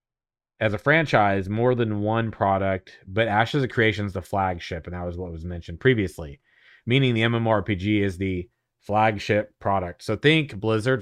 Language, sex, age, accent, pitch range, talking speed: English, male, 30-49, American, 95-120 Hz, 170 wpm